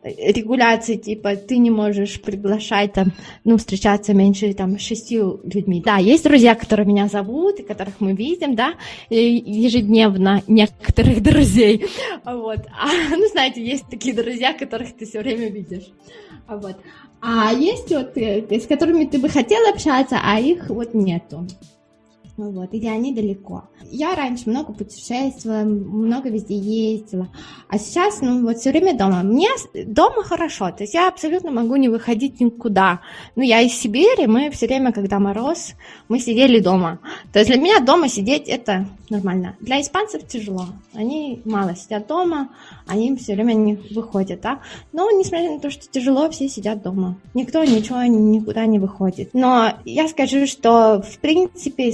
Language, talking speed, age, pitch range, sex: Russian, 155 wpm, 20-39, 205-270 Hz, female